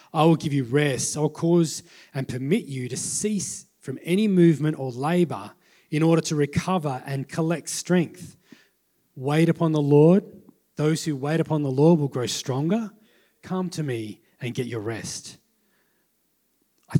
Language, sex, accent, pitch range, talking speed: English, male, Australian, 135-170 Hz, 160 wpm